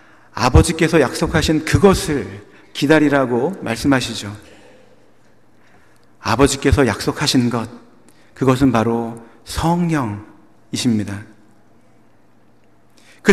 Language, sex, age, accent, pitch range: Korean, male, 40-59, native, 140-195 Hz